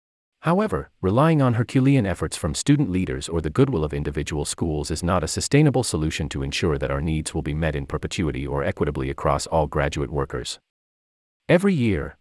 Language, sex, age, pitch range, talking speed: English, male, 30-49, 75-120 Hz, 180 wpm